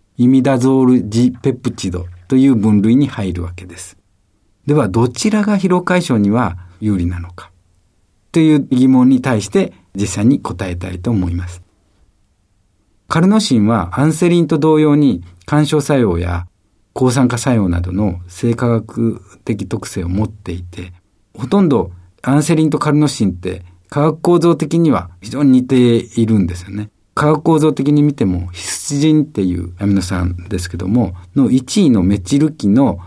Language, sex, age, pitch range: Japanese, male, 50-69, 90-145 Hz